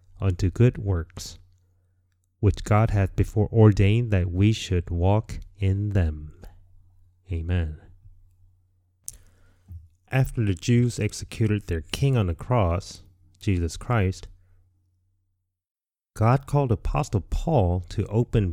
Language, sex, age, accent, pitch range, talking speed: English, male, 30-49, American, 90-110 Hz, 105 wpm